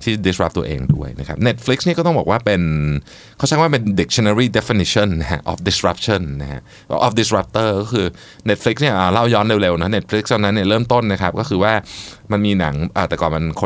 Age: 20-39